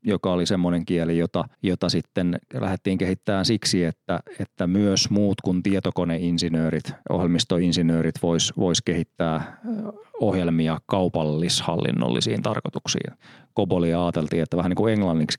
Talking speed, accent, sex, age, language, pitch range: 115 wpm, native, male, 30-49, Finnish, 85-100 Hz